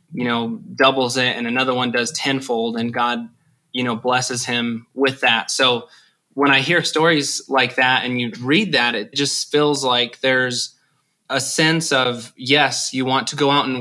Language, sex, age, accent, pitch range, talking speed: English, male, 20-39, American, 120-135 Hz, 185 wpm